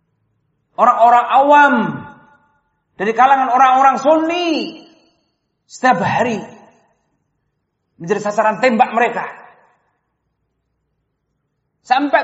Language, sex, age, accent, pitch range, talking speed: Indonesian, male, 40-59, native, 145-235 Hz, 65 wpm